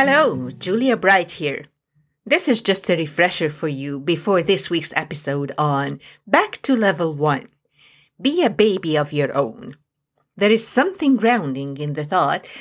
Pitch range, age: 150-230 Hz, 50-69